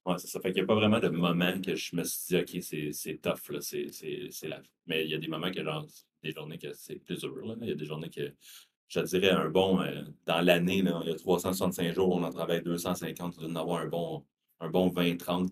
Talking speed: 275 wpm